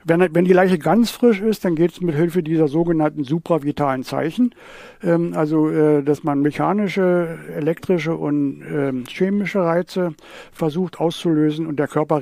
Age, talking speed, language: 60-79, 155 wpm, German